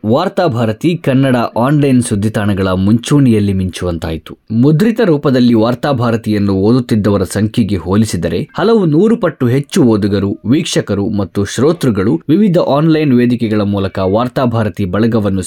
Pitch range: 105-140 Hz